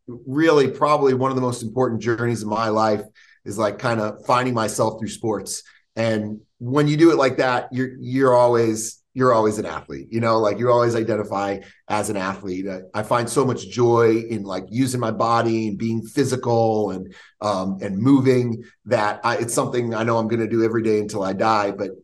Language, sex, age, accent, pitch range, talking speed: English, male, 30-49, American, 110-130 Hz, 200 wpm